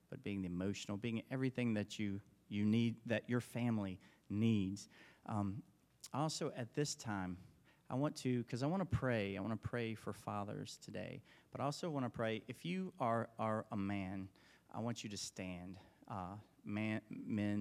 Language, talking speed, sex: English, 180 wpm, male